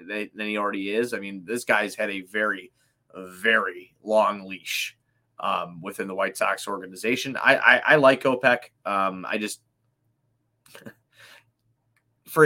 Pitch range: 100-130 Hz